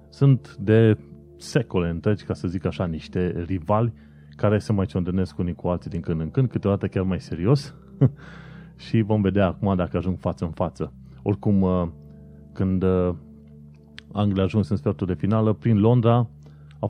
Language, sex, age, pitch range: Romanian, male, 30-49, 85-110 Hz